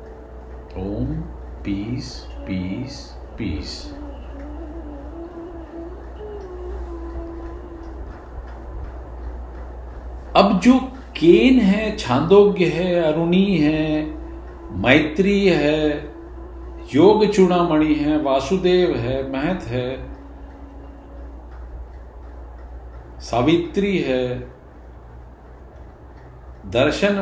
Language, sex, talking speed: Hindi, male, 55 wpm